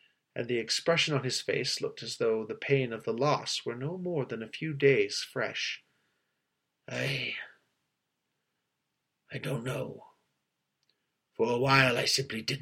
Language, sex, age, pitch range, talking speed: English, male, 40-59, 120-140 Hz, 150 wpm